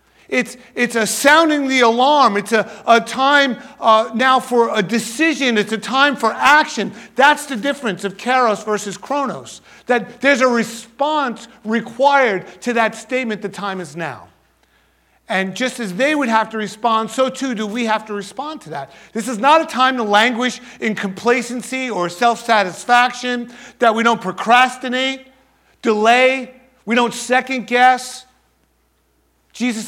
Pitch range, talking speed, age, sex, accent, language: 180-245 Hz, 155 wpm, 50-69, male, American, English